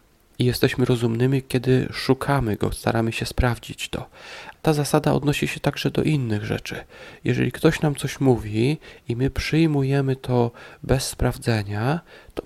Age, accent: 40-59, native